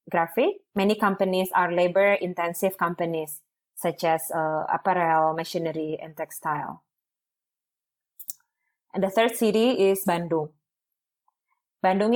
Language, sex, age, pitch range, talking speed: English, female, 20-39, 170-200 Hz, 100 wpm